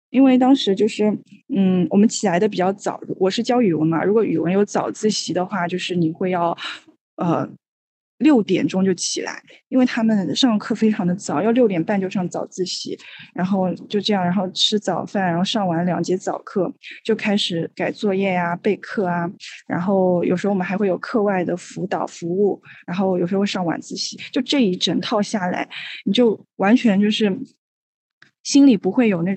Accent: native